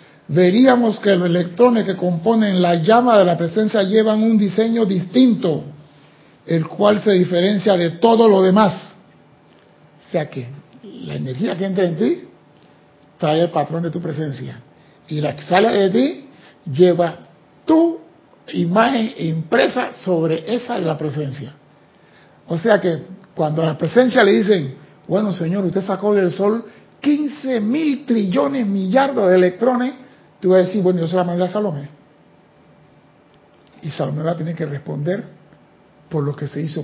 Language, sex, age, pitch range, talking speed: Spanish, male, 60-79, 160-210 Hz, 160 wpm